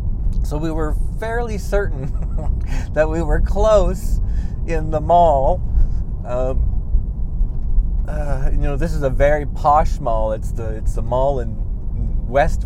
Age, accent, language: 40-59, American, English